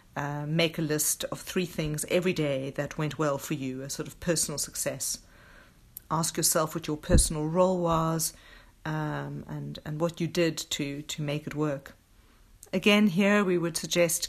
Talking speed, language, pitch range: 175 wpm, Dutch, 145-175 Hz